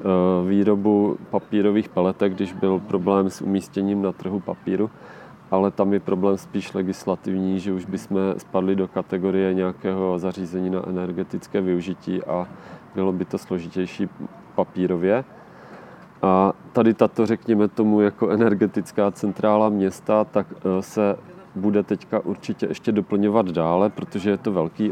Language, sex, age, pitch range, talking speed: Czech, male, 30-49, 95-105 Hz, 130 wpm